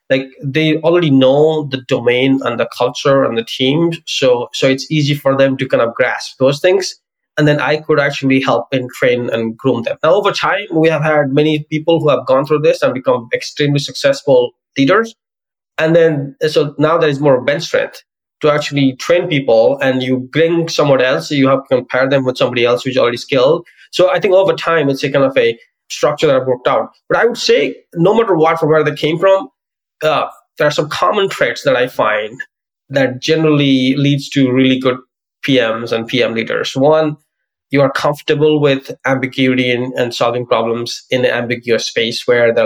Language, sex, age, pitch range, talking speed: English, male, 20-39, 130-165 Hz, 205 wpm